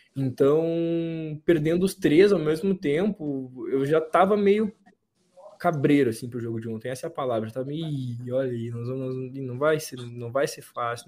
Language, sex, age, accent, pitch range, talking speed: Portuguese, male, 20-39, Brazilian, 130-175 Hz, 185 wpm